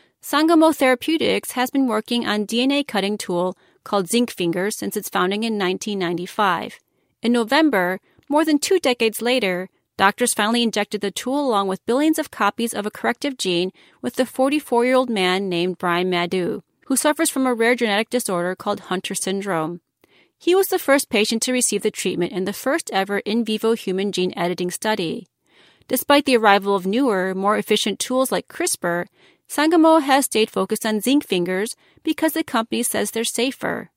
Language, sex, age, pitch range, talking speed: English, female, 30-49, 195-265 Hz, 170 wpm